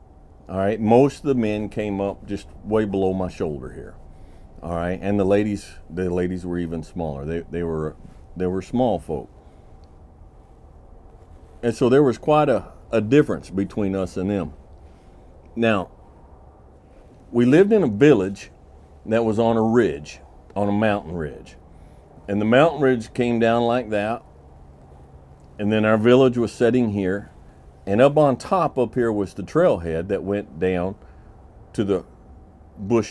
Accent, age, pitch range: American, 50-69, 75-110 Hz